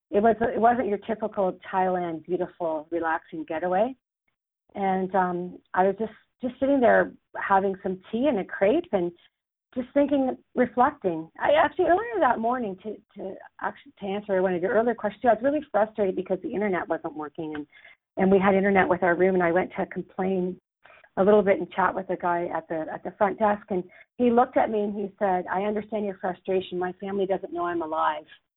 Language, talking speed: English, 205 wpm